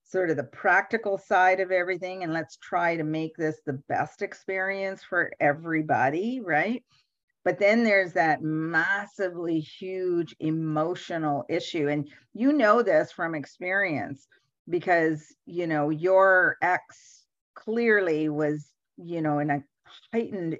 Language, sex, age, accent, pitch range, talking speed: English, female, 50-69, American, 155-210 Hz, 130 wpm